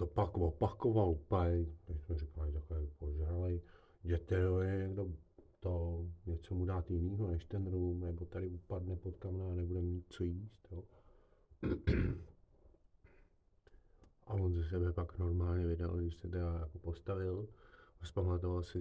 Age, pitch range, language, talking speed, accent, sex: 40-59, 85-105 Hz, Czech, 140 wpm, native, male